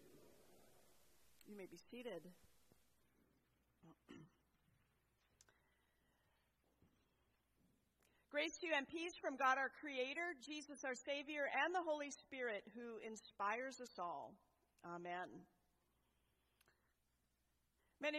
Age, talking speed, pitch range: 40-59, 85 wpm, 225-295 Hz